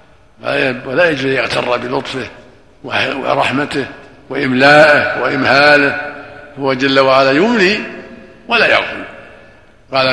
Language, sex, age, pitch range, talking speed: Arabic, male, 60-79, 120-145 Hz, 90 wpm